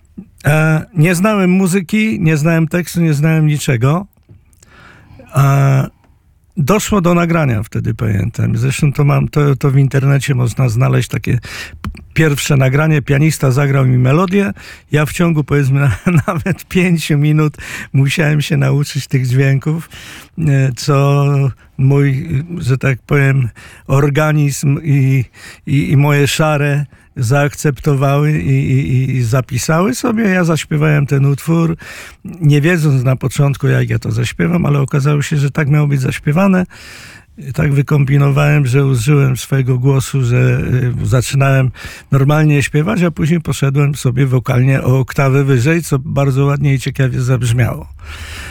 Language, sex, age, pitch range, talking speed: Polish, male, 50-69, 130-155 Hz, 125 wpm